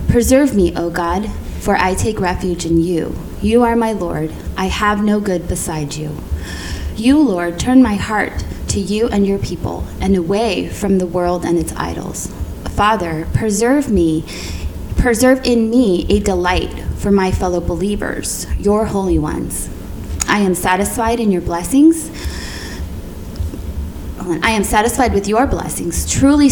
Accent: American